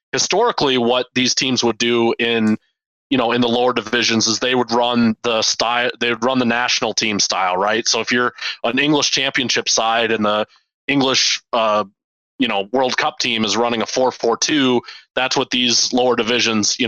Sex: male